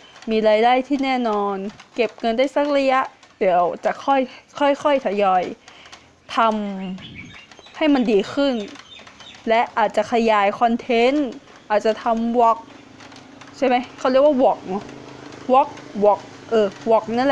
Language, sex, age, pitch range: Thai, female, 20-39, 220-285 Hz